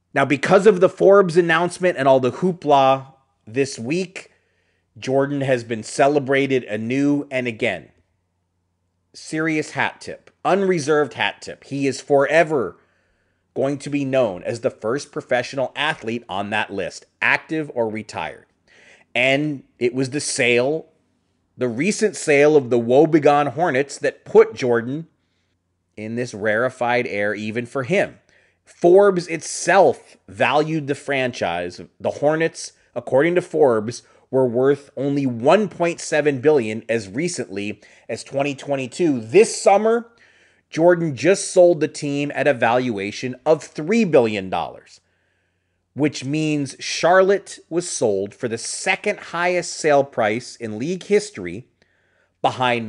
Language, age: English, 30-49